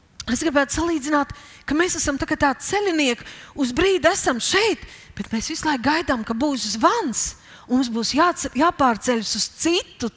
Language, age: Finnish, 30-49